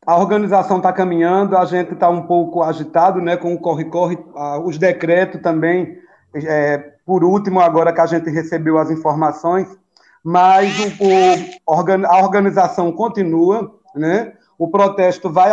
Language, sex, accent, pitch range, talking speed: Portuguese, male, Brazilian, 170-205 Hz, 130 wpm